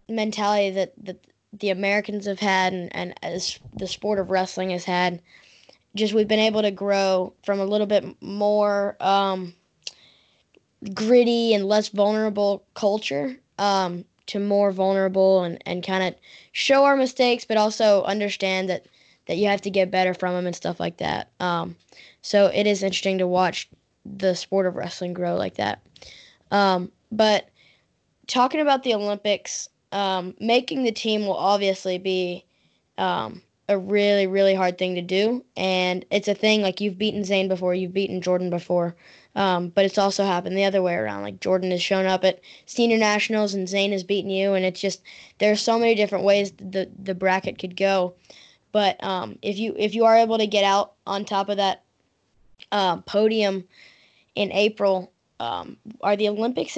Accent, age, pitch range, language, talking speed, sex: American, 10-29, 185-210 Hz, English, 175 wpm, female